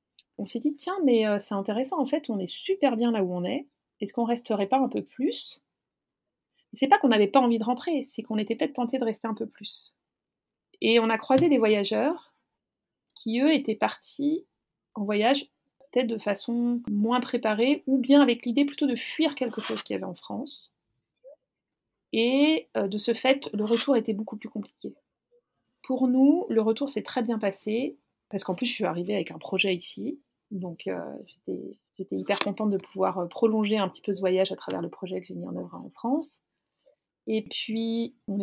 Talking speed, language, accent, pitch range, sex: 210 wpm, French, French, 200-260 Hz, female